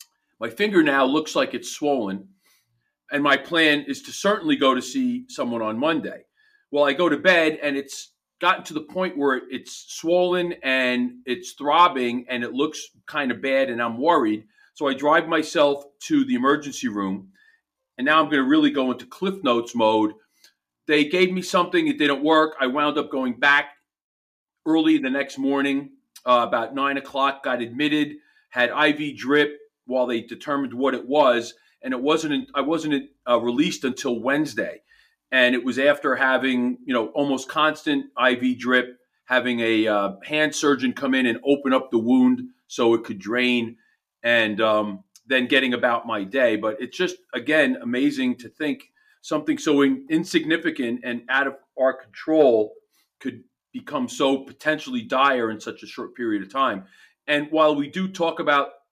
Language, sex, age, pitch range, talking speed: English, male, 40-59, 125-170 Hz, 175 wpm